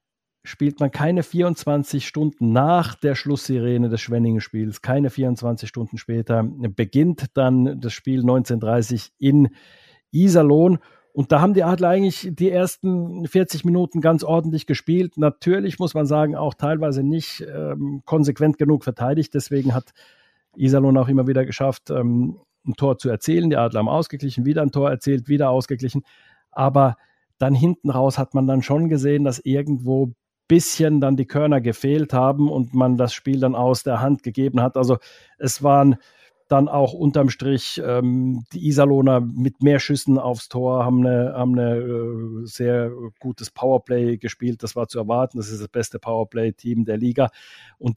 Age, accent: 50-69, German